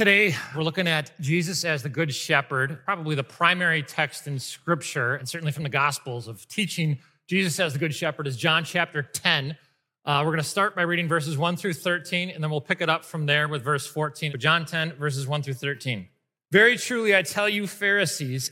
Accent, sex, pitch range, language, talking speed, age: American, male, 150-200 Hz, English, 210 wpm, 30-49